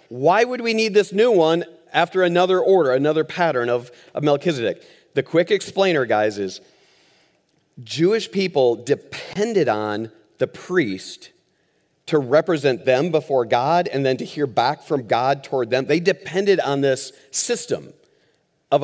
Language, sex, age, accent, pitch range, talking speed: English, male, 40-59, American, 125-165 Hz, 145 wpm